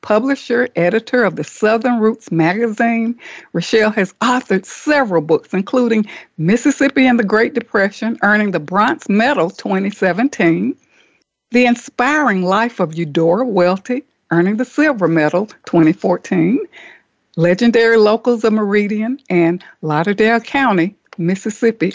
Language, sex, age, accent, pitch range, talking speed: English, female, 60-79, American, 185-245 Hz, 115 wpm